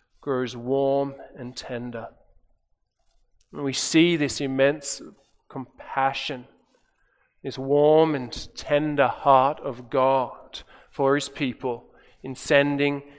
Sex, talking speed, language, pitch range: male, 100 wpm, English, 135-170 Hz